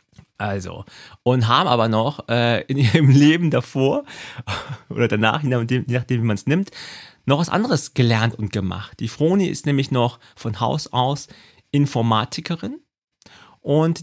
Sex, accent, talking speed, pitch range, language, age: male, German, 150 wpm, 115-150 Hz, German, 40-59